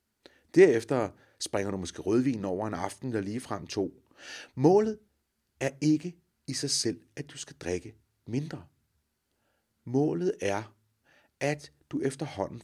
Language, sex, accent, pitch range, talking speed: Danish, male, native, 90-150 Hz, 130 wpm